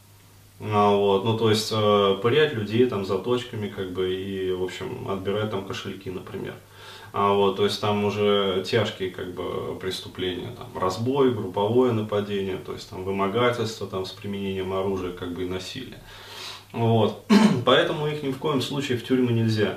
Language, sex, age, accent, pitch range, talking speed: Russian, male, 20-39, native, 100-125 Hz, 165 wpm